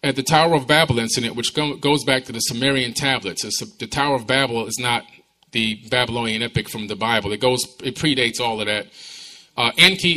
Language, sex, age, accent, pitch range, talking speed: English, male, 30-49, American, 115-145 Hz, 200 wpm